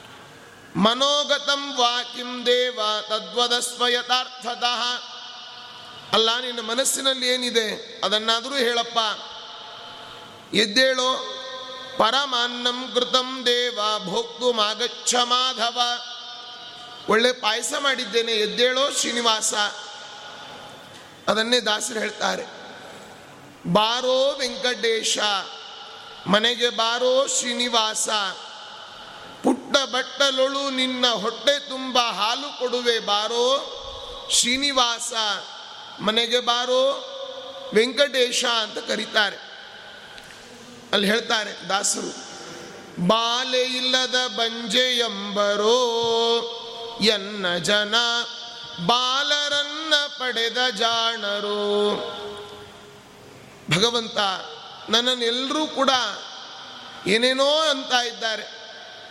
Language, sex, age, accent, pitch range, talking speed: Kannada, male, 30-49, native, 220-255 Hz, 45 wpm